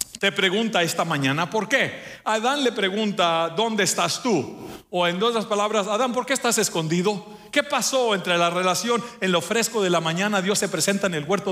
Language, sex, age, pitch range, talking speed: English, male, 50-69, 170-220 Hz, 200 wpm